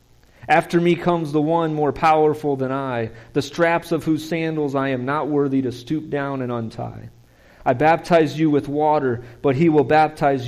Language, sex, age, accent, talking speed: English, male, 40-59, American, 185 wpm